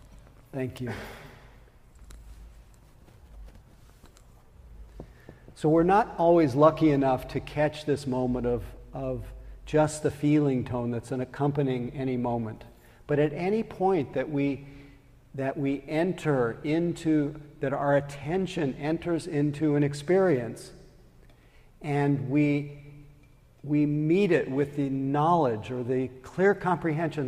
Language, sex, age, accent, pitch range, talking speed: English, male, 50-69, American, 130-160 Hz, 115 wpm